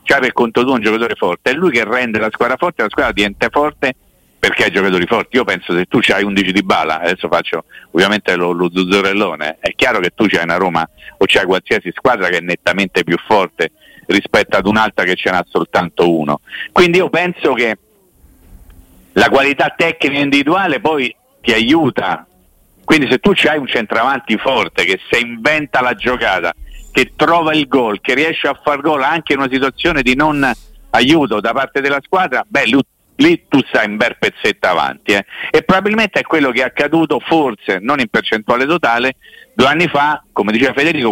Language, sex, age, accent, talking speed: Italian, male, 50-69, native, 190 wpm